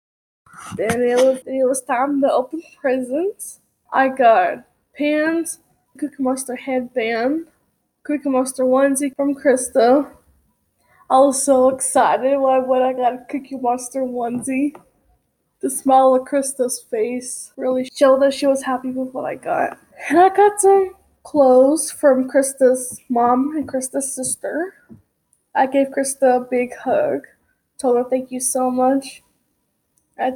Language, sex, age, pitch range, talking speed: English, female, 10-29, 255-290 Hz, 140 wpm